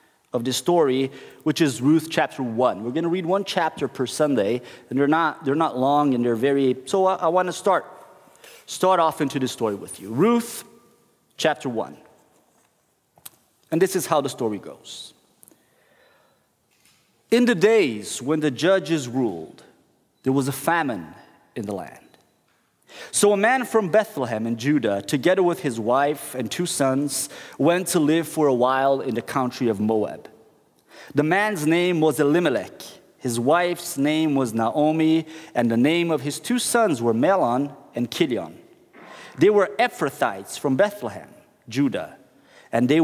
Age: 30-49